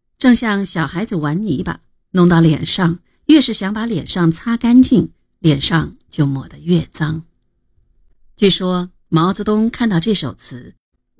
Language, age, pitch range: Chinese, 50-69, 155-215 Hz